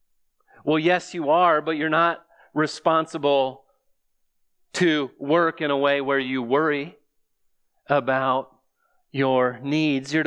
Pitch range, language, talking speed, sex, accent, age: 125-160 Hz, English, 115 wpm, male, American, 40-59